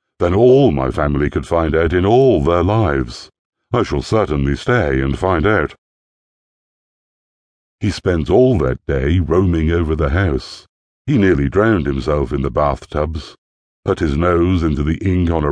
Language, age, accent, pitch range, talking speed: English, 60-79, British, 70-95 Hz, 160 wpm